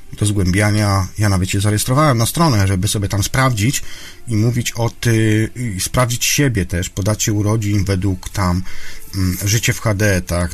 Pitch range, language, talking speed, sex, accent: 95-120 Hz, Polish, 160 wpm, male, native